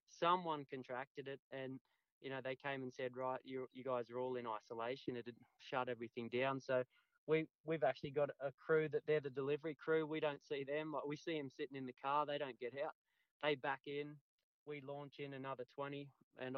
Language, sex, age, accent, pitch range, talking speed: English, male, 20-39, Australian, 125-145 Hz, 215 wpm